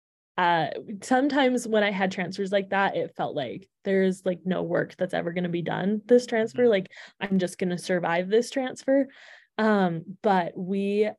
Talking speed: 180 wpm